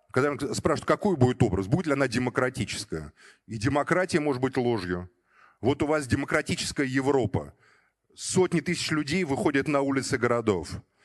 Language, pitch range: Russian, 125-160 Hz